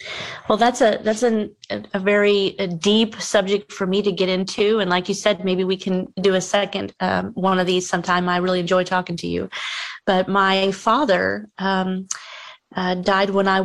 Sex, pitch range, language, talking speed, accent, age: female, 180-205 Hz, English, 190 wpm, American, 40-59